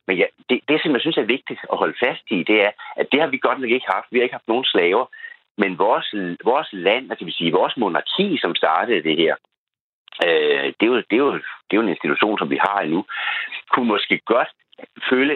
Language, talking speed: Danish, 240 wpm